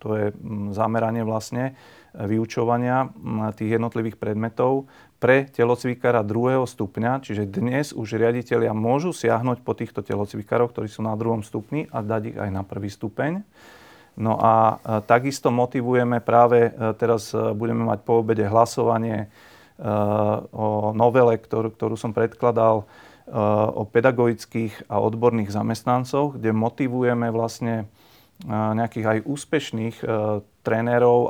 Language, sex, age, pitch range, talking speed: Slovak, male, 40-59, 110-120 Hz, 120 wpm